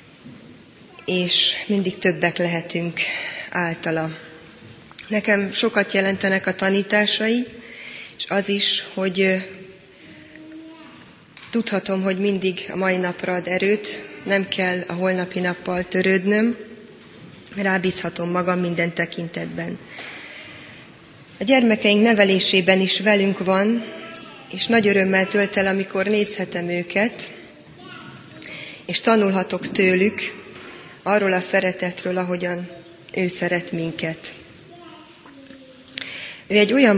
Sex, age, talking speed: female, 20-39, 95 wpm